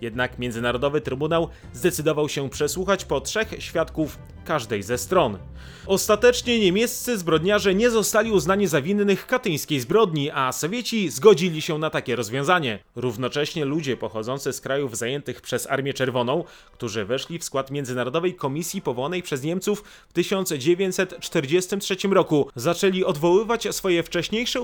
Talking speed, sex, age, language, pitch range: 130 wpm, male, 30-49, Polish, 135-190 Hz